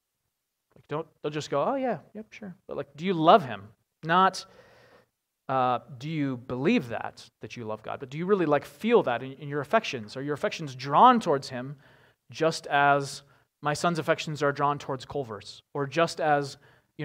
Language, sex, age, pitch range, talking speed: English, male, 30-49, 125-165 Hz, 190 wpm